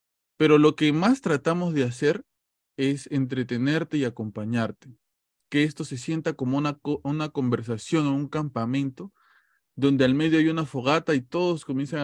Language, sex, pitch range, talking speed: Spanish, male, 125-155 Hz, 155 wpm